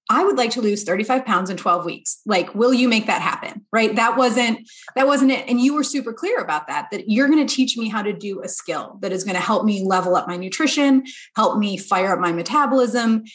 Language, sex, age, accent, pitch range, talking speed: English, female, 30-49, American, 190-255 Hz, 250 wpm